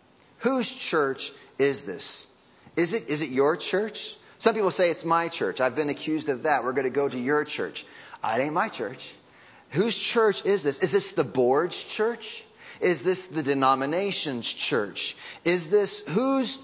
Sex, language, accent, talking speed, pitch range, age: male, English, American, 175 wpm, 160-215 Hz, 30-49